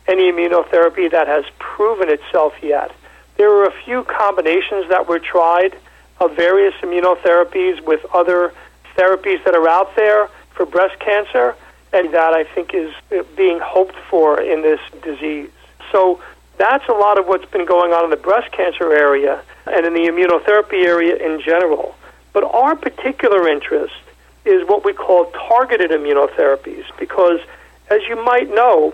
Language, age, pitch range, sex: English, 40-59, 170-260 Hz, male